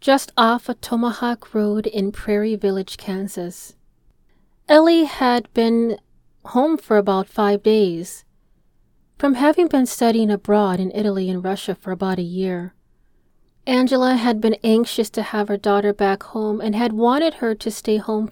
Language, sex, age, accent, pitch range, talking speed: English, female, 30-49, American, 205-245 Hz, 155 wpm